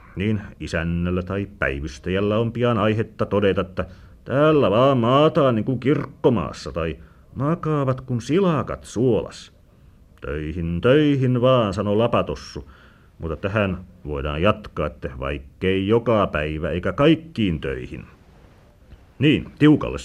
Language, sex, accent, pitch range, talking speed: Finnish, male, native, 85-125 Hz, 115 wpm